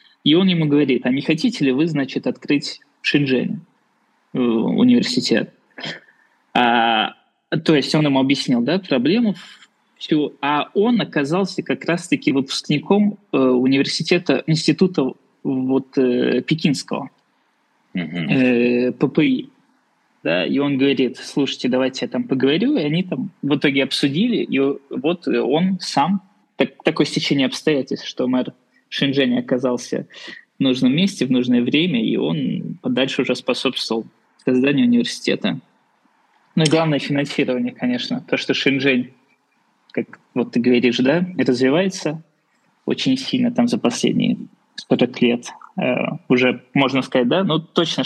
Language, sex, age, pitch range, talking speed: Russian, male, 20-39, 130-205 Hz, 125 wpm